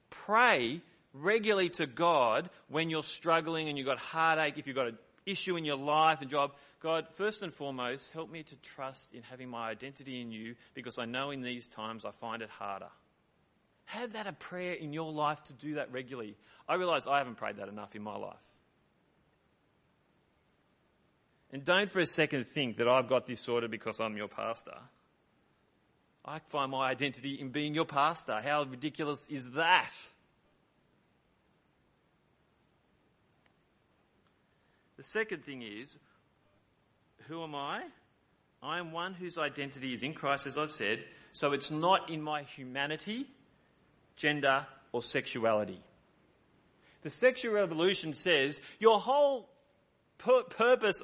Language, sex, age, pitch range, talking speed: English, male, 30-49, 135-180 Hz, 150 wpm